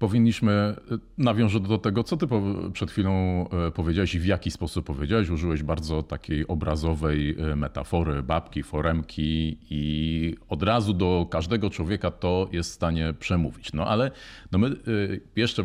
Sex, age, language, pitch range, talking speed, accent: male, 40-59, Polish, 85-105 Hz, 140 wpm, native